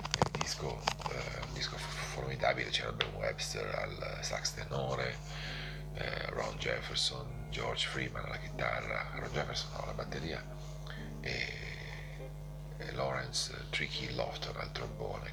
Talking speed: 120 wpm